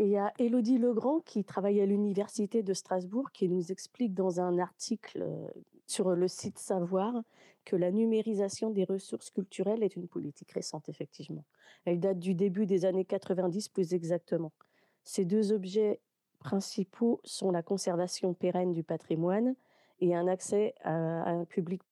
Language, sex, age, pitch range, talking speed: French, female, 40-59, 175-205 Hz, 155 wpm